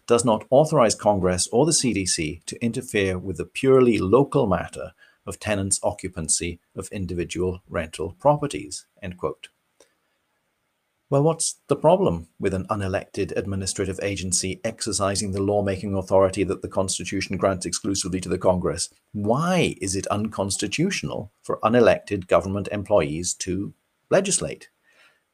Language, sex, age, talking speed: English, male, 40-59, 125 wpm